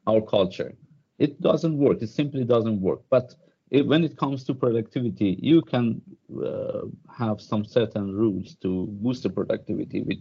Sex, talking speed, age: male, 165 wpm, 50-69